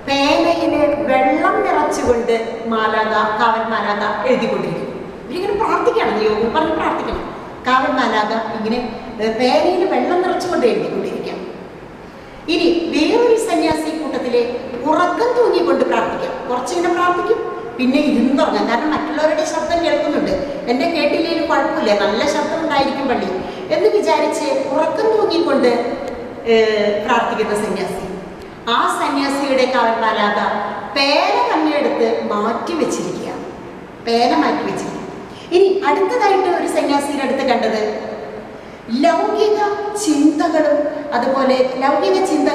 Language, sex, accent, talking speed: English, female, Indian, 80 wpm